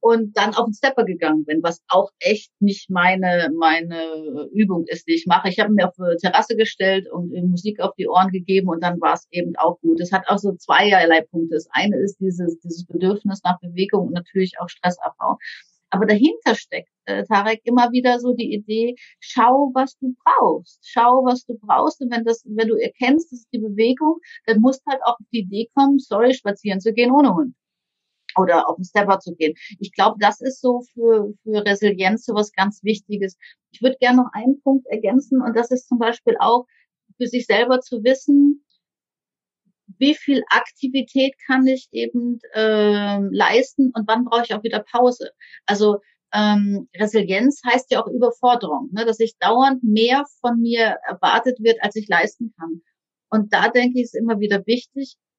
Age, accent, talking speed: 50-69, German, 190 wpm